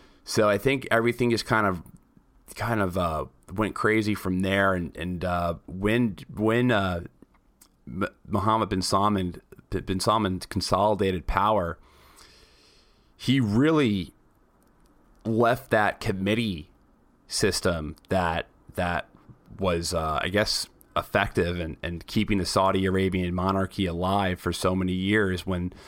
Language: English